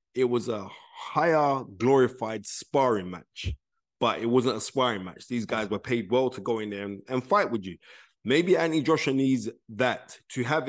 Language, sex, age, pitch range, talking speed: English, male, 20-39, 105-140 Hz, 190 wpm